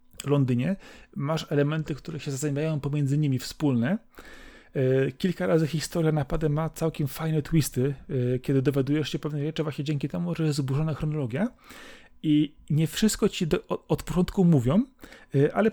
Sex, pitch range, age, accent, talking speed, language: male, 145-185 Hz, 30-49, native, 165 wpm, Polish